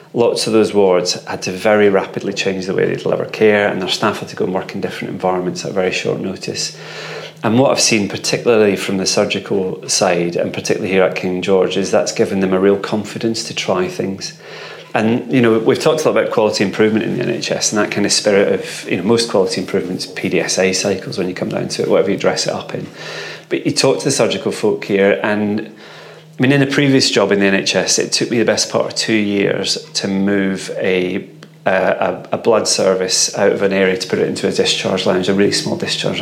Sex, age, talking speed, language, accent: male, 30-49, 235 wpm, English, British